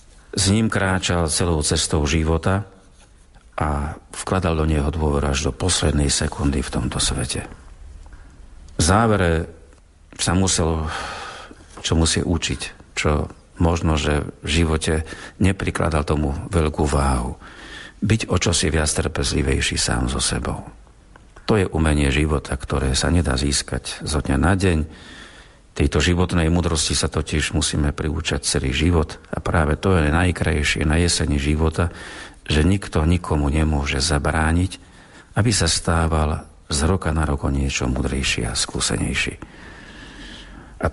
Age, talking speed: 50-69, 130 wpm